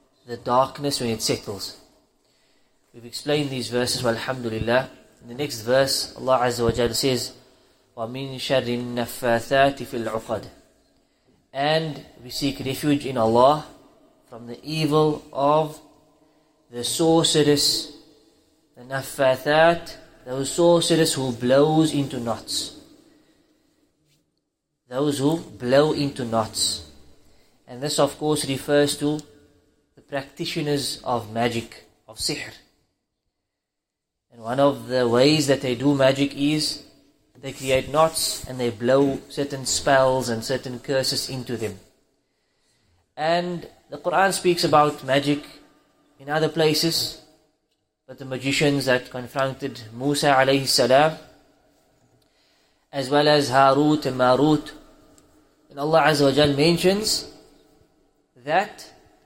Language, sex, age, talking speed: English, male, 20-39, 110 wpm